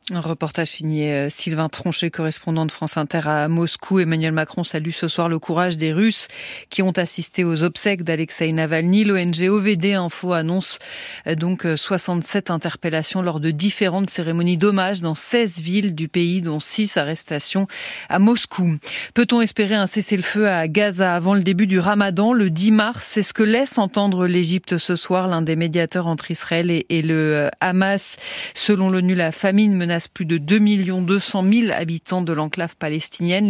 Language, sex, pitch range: French, female, 165-205 Hz